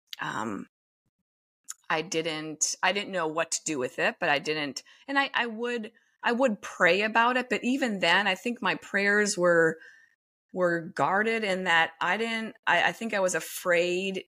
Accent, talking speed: American, 180 wpm